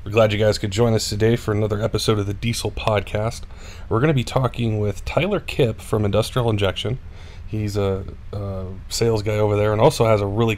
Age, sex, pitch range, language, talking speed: 20-39, male, 95-110 Hz, English, 215 wpm